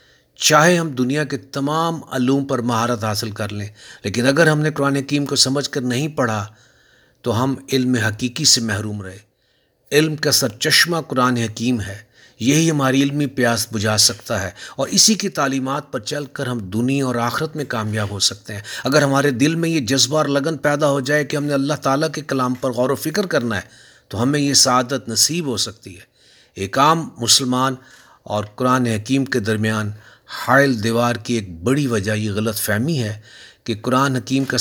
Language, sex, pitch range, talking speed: Urdu, male, 115-145 Hz, 195 wpm